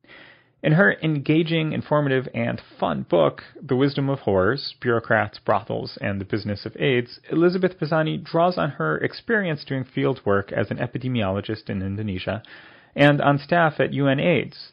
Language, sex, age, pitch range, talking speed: English, male, 30-49, 105-140 Hz, 150 wpm